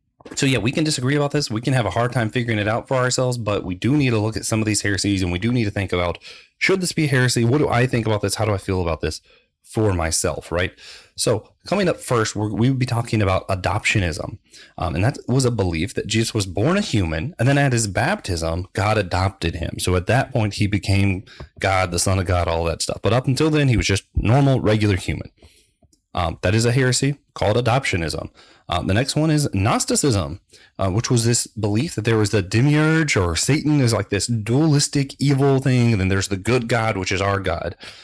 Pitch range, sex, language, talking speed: 95-125 Hz, male, English, 235 wpm